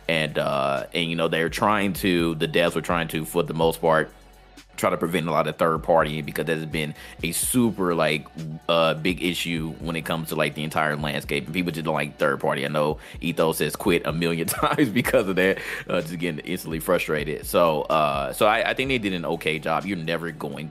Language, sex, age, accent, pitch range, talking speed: English, male, 30-49, American, 75-85 Hz, 230 wpm